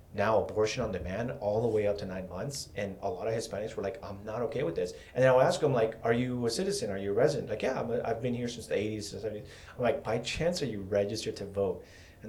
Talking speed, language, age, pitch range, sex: 275 wpm, English, 30-49, 95-115 Hz, male